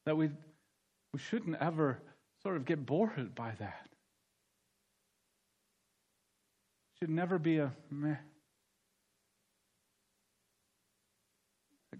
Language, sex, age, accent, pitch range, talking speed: English, male, 50-69, American, 110-145 Hz, 85 wpm